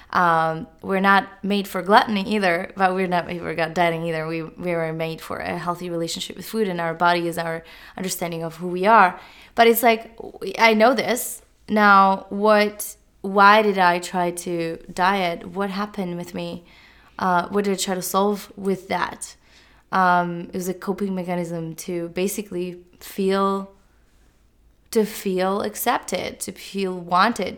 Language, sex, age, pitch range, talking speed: English, female, 20-39, 175-195 Hz, 165 wpm